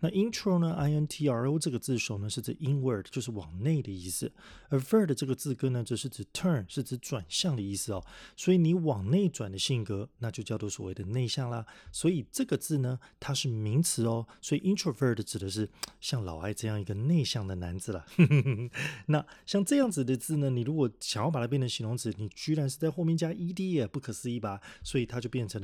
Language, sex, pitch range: Chinese, male, 110-150 Hz